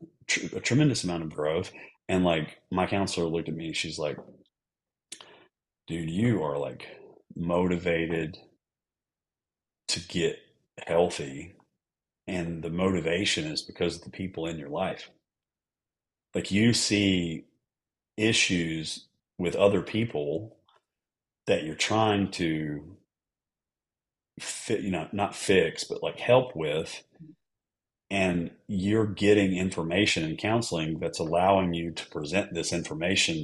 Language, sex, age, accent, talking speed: English, male, 40-59, American, 120 wpm